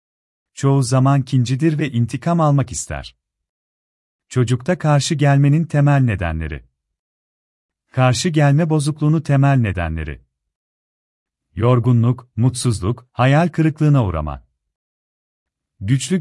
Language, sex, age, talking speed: Turkish, male, 40-59, 85 wpm